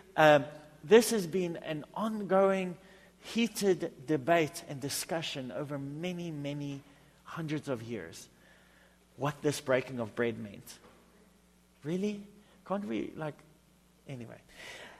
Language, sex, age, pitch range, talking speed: English, male, 40-59, 135-195 Hz, 110 wpm